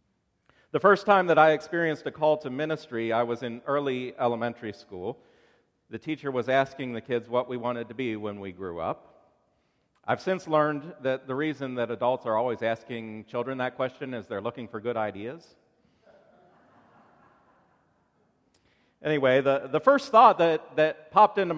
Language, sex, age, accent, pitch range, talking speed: English, male, 40-59, American, 120-160 Hz, 165 wpm